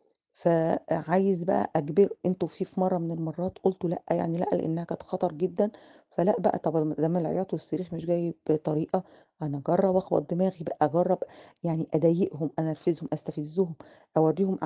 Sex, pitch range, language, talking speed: female, 165-210 Hz, Arabic, 145 wpm